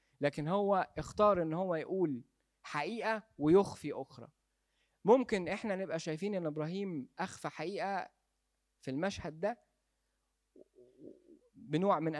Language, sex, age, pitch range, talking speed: Arabic, male, 20-39, 130-170 Hz, 110 wpm